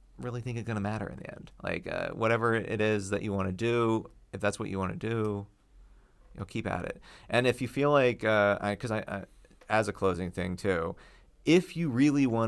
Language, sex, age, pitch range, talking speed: English, male, 30-49, 95-115 Hz, 235 wpm